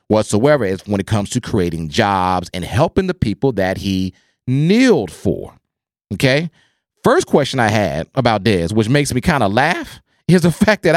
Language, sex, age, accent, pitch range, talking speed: English, male, 40-59, American, 100-160 Hz, 180 wpm